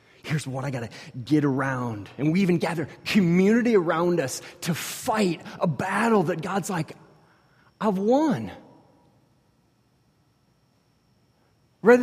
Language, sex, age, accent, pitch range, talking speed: English, male, 30-49, American, 120-200 Hz, 120 wpm